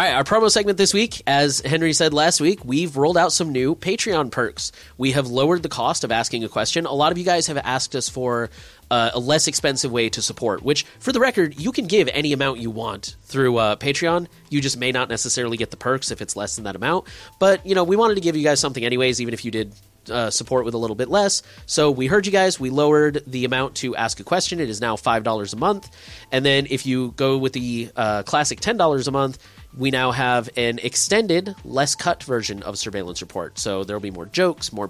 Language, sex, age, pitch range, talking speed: English, male, 30-49, 115-160 Hz, 240 wpm